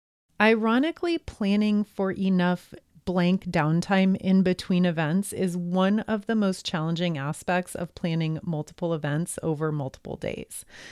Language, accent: English, American